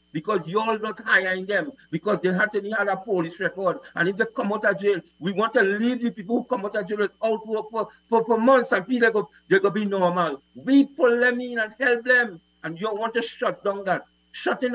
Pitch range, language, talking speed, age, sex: 190-255 Hz, English, 240 wpm, 60-79, male